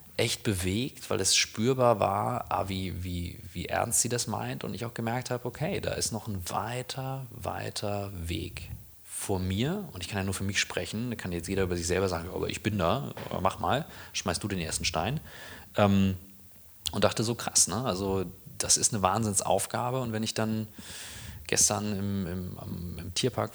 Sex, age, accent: male, 30-49, German